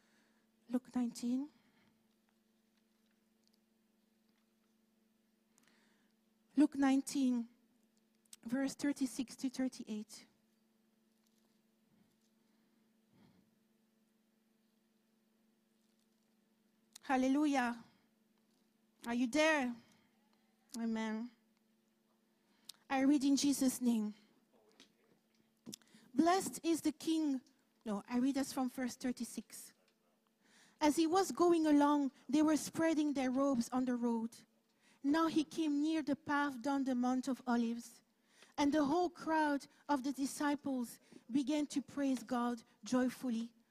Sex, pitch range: female, 220-280 Hz